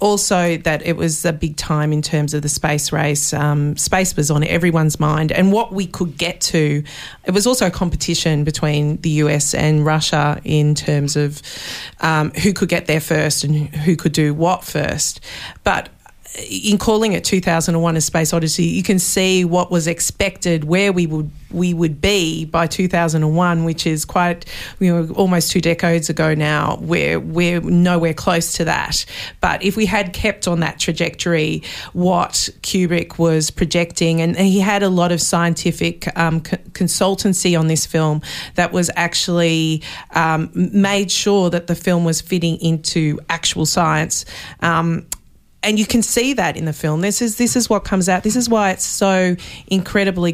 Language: English